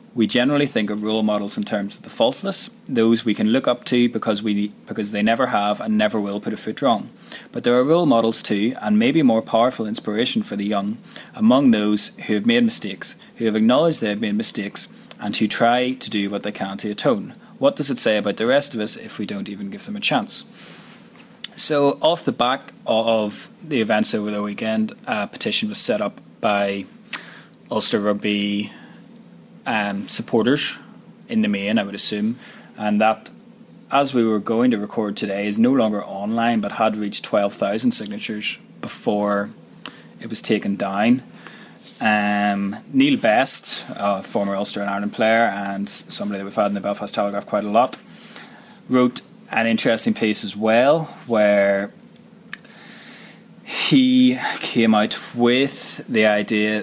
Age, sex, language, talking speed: 20-39, male, English, 175 wpm